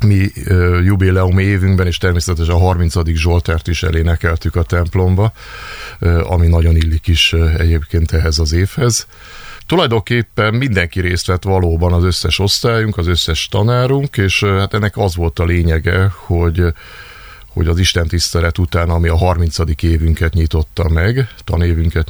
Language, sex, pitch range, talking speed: Hungarian, male, 85-95 Hz, 135 wpm